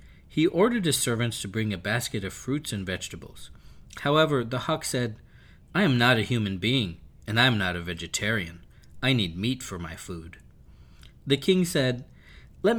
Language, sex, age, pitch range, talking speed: English, male, 40-59, 90-135 Hz, 180 wpm